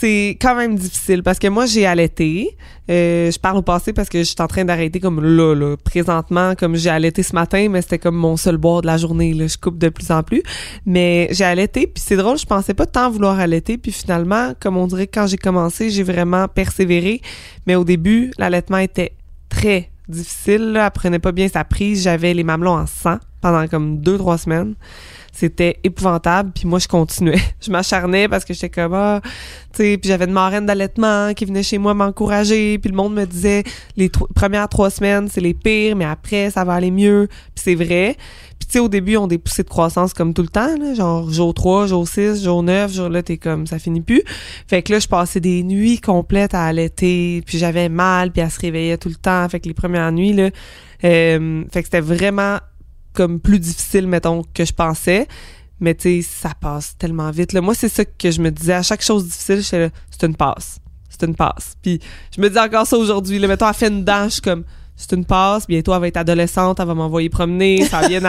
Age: 20-39